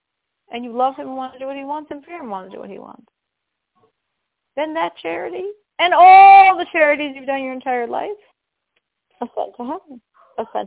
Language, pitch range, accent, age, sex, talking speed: English, 225-325 Hz, American, 40-59, female, 210 wpm